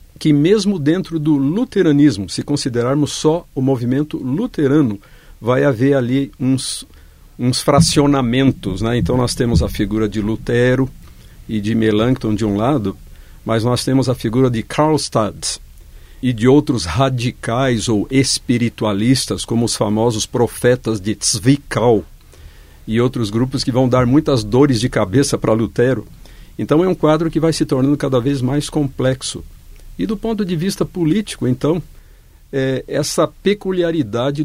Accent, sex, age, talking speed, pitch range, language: Brazilian, male, 50-69, 145 wpm, 105-140 Hz, Portuguese